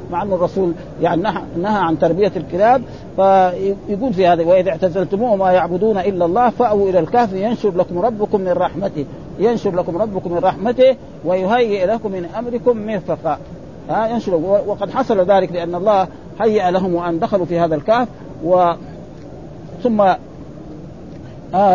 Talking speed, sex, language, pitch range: 150 wpm, male, Arabic, 175-220 Hz